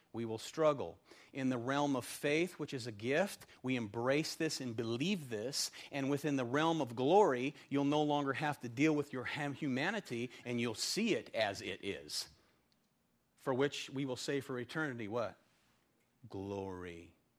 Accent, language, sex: American, English, male